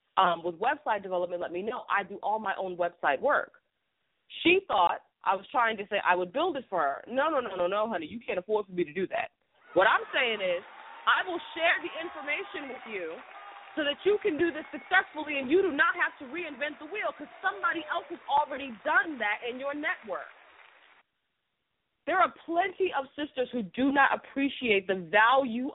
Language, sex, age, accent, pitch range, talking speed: English, female, 30-49, American, 200-305 Hz, 205 wpm